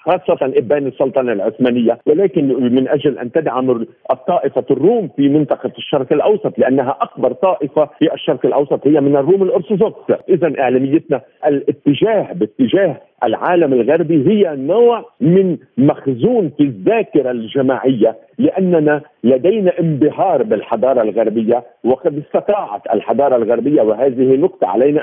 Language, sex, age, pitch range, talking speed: Arabic, male, 50-69, 135-180 Hz, 120 wpm